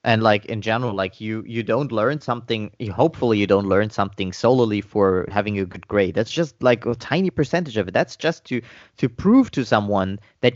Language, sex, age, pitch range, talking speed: English, male, 30-49, 100-125 Hz, 215 wpm